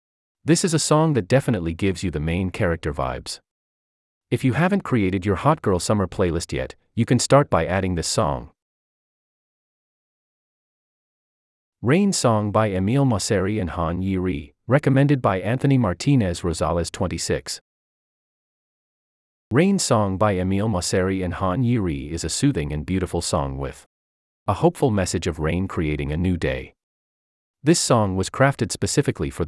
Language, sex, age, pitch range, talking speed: English, male, 30-49, 80-120 Hz, 145 wpm